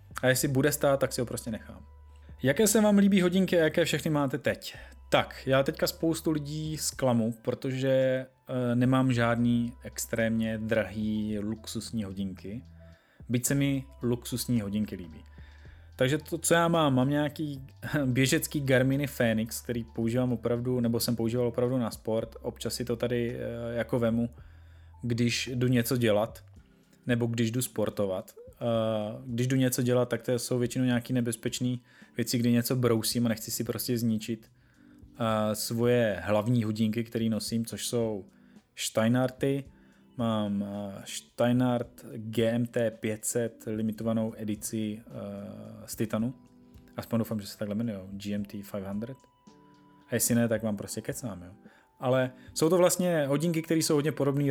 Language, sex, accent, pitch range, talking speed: Czech, male, native, 110-130 Hz, 145 wpm